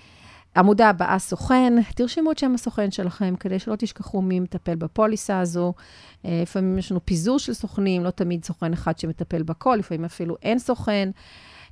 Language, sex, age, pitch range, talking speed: Hebrew, female, 40-59, 170-220 Hz, 160 wpm